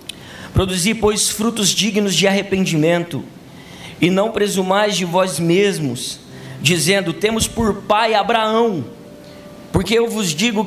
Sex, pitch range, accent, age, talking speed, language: male, 185-225 Hz, Brazilian, 20-39, 120 wpm, Portuguese